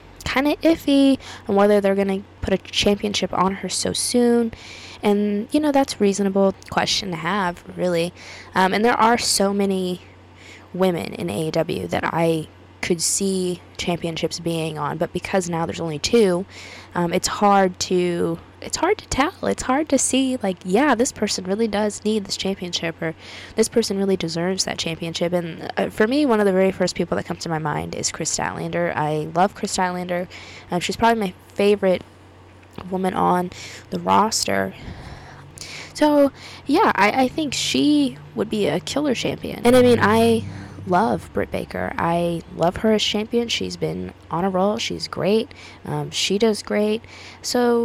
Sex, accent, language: female, American, English